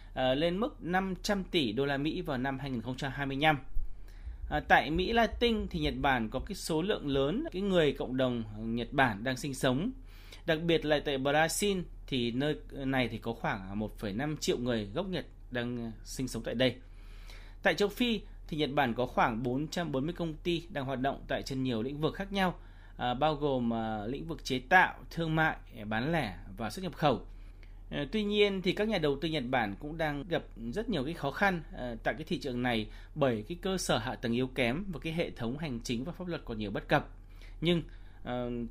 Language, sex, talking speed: Vietnamese, male, 210 wpm